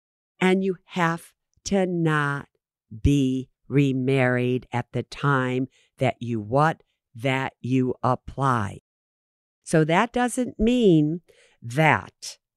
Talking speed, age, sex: 100 wpm, 50-69, female